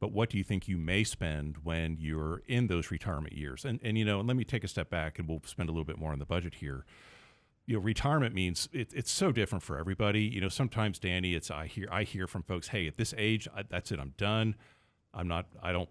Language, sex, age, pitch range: English, male, 50-69, 85-110 Hz